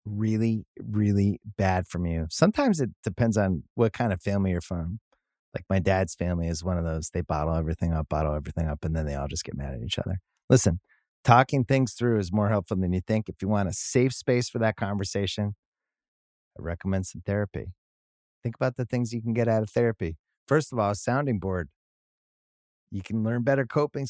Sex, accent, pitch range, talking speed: male, American, 90-120 Hz, 210 wpm